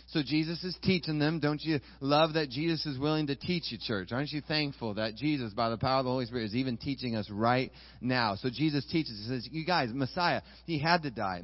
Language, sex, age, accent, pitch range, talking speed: English, male, 30-49, American, 135-175 Hz, 240 wpm